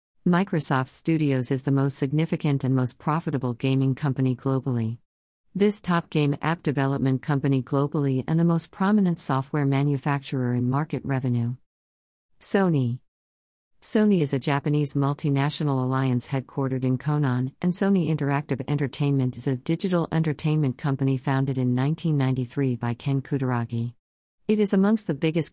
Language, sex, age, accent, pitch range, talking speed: English, female, 50-69, American, 130-155 Hz, 135 wpm